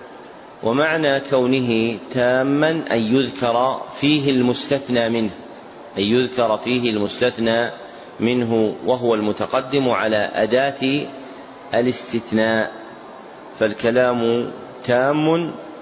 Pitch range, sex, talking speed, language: 115-135 Hz, male, 75 wpm, Arabic